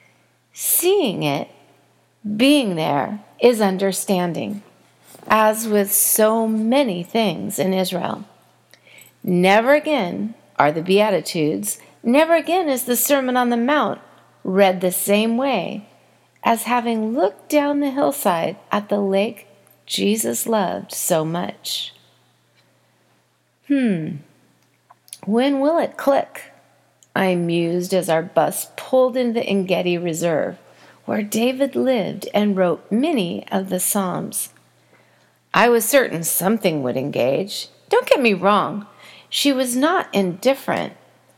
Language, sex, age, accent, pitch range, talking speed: English, female, 40-59, American, 185-255 Hz, 120 wpm